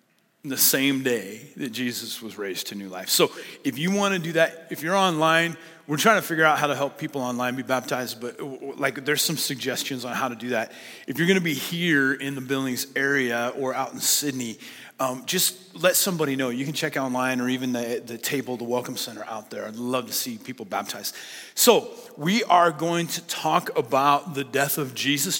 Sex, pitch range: male, 140-175 Hz